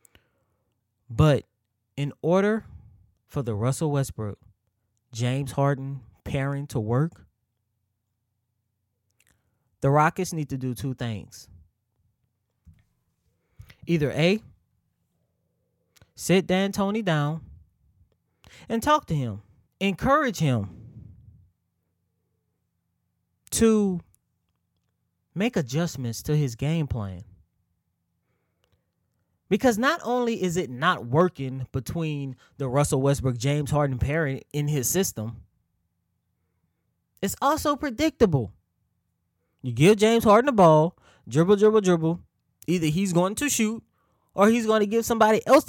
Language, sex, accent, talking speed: English, male, American, 105 wpm